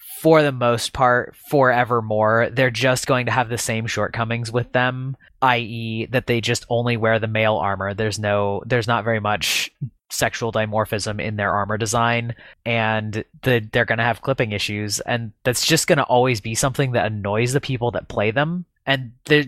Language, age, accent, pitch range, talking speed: English, 20-39, American, 110-130 Hz, 180 wpm